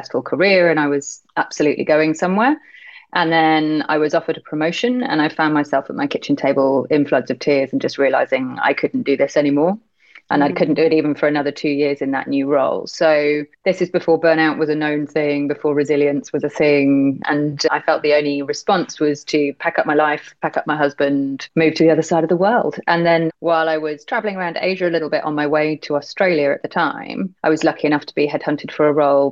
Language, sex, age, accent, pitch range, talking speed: English, female, 30-49, British, 145-160 Hz, 235 wpm